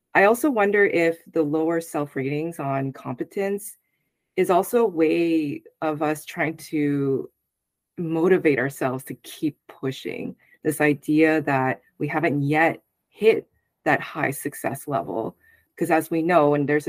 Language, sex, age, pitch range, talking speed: English, female, 20-39, 145-175 Hz, 140 wpm